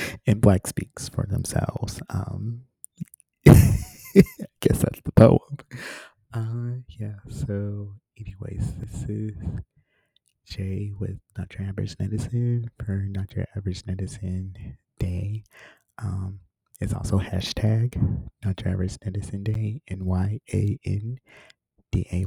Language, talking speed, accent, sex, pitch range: English, 100 wpm, American, male, 95-115 Hz